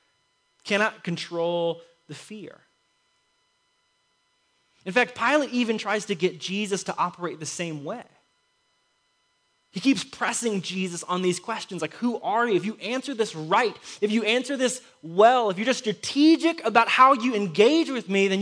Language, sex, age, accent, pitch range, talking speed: English, male, 20-39, American, 165-215 Hz, 160 wpm